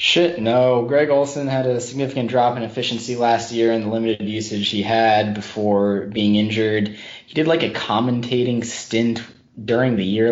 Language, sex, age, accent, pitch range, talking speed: English, male, 10-29, American, 100-120 Hz, 175 wpm